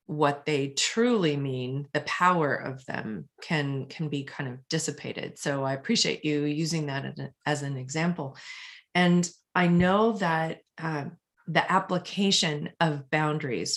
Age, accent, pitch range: 30-49, American, 145-170 Hz